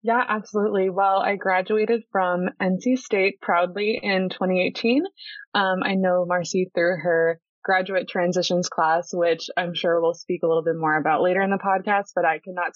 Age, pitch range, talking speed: 20-39, 180-205 Hz, 175 wpm